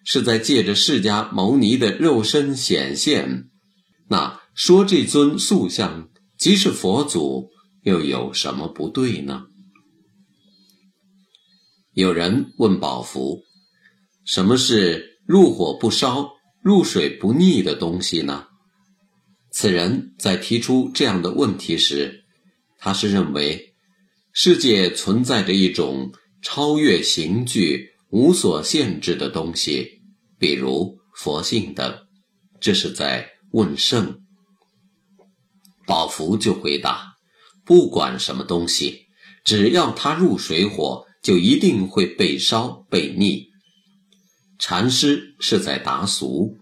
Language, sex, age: Chinese, male, 50-69